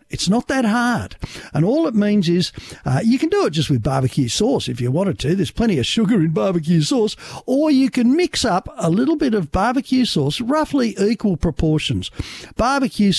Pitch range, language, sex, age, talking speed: 155-235 Hz, English, male, 60-79, 200 wpm